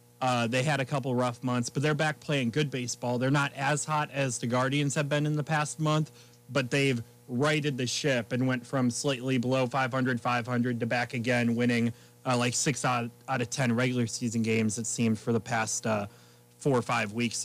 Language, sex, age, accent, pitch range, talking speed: English, male, 30-49, American, 120-145 Hz, 215 wpm